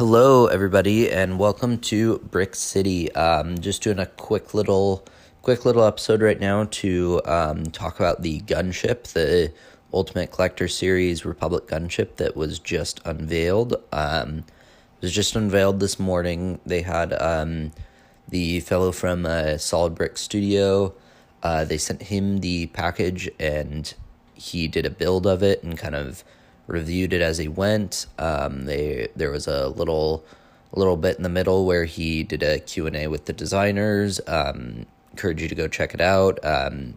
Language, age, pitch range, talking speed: English, 20-39, 80-100 Hz, 165 wpm